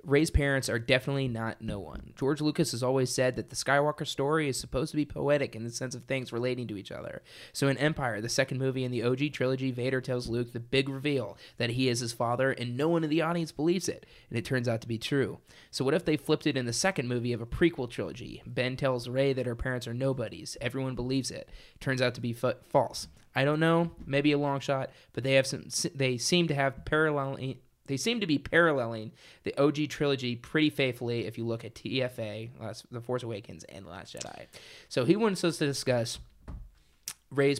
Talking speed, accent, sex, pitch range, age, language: 230 wpm, American, male, 120-145 Hz, 20-39, English